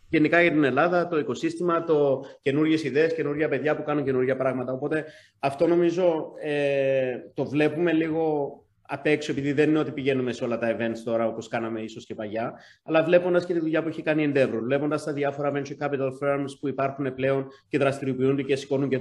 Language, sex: Greek, male